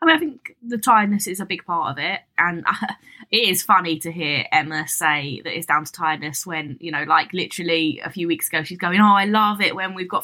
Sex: female